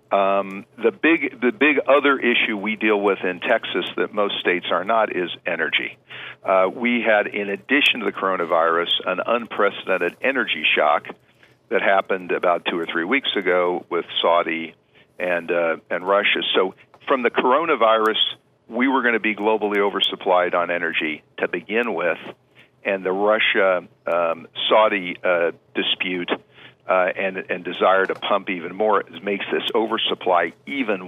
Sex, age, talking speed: male, 50-69, 155 wpm